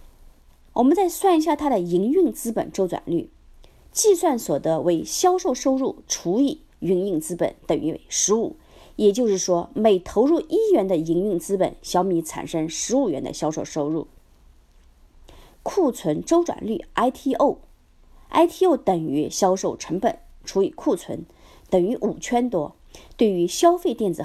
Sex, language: female, Chinese